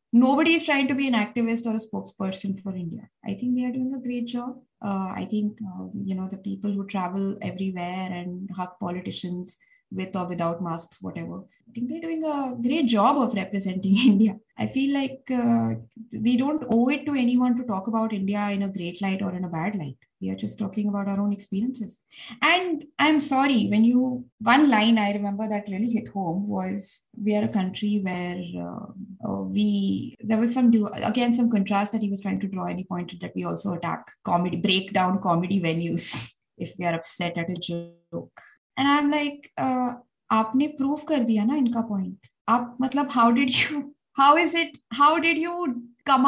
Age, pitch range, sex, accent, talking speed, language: 20-39, 190-255 Hz, female, Indian, 190 wpm, English